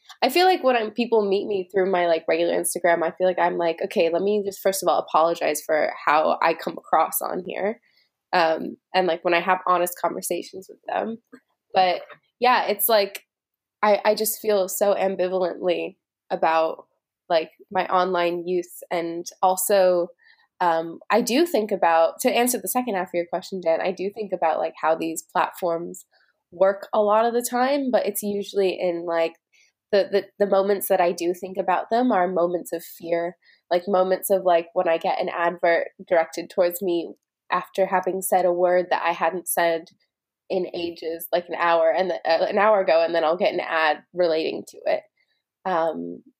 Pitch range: 170-200 Hz